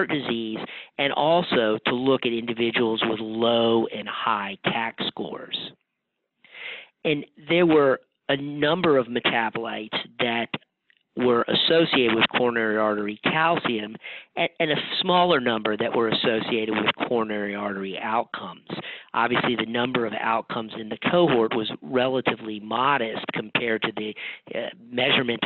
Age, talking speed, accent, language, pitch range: 40-59, 130 wpm, American, English, 110-135 Hz